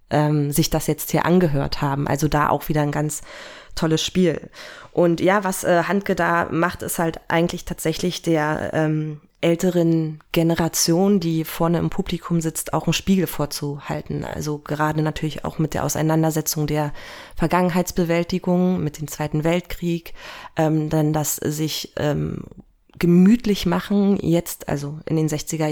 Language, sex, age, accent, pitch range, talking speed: German, female, 20-39, German, 155-175 Hz, 150 wpm